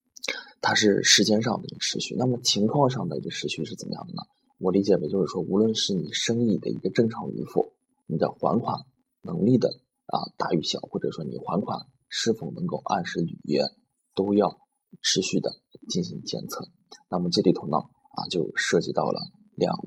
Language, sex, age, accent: Chinese, male, 20-39, native